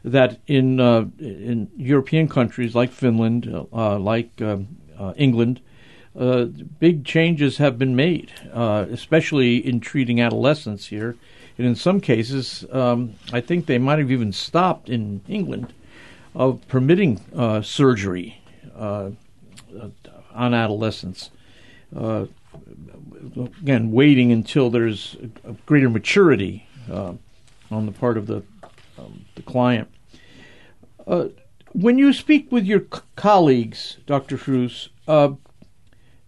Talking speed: 120 wpm